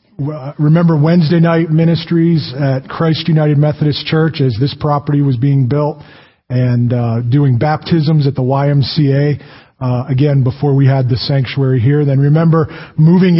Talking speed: 150 wpm